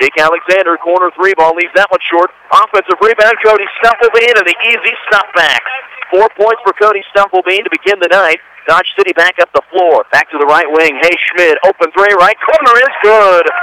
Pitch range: 185-250 Hz